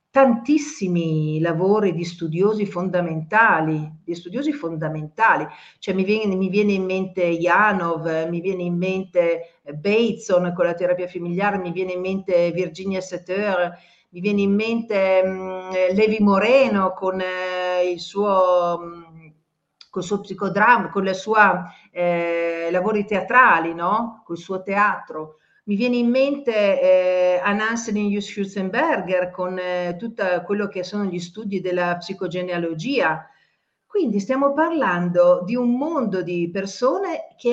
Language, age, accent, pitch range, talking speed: Italian, 50-69, native, 170-215 Hz, 125 wpm